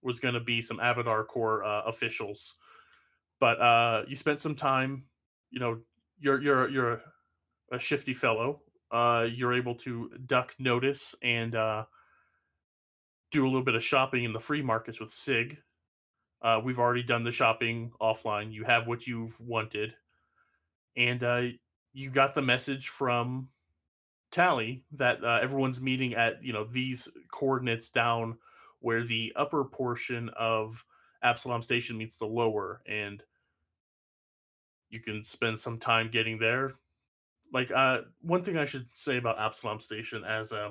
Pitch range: 110-130 Hz